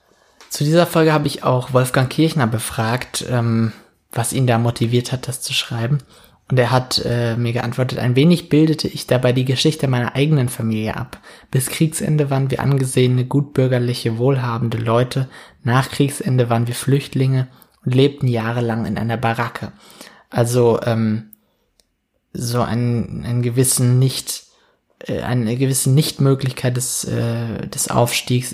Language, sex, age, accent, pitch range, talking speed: English, male, 20-39, German, 115-130 Hz, 140 wpm